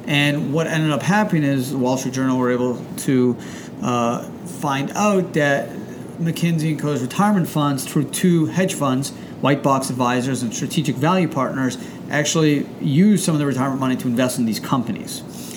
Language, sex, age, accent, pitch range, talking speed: English, male, 40-59, American, 125-165 Hz, 170 wpm